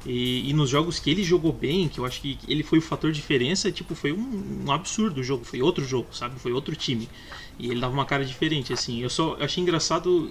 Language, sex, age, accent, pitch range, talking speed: Portuguese, male, 20-39, Brazilian, 125-160 Hz, 245 wpm